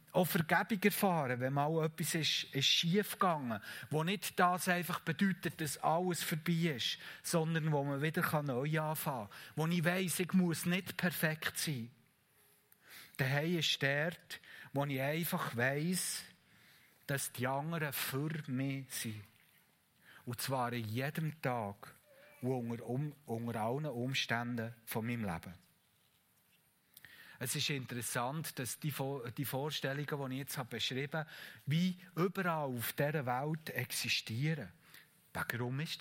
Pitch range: 125-165 Hz